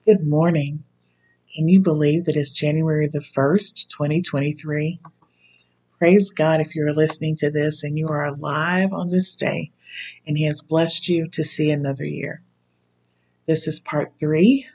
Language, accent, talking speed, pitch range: English, American, 155 wpm, 140-160 Hz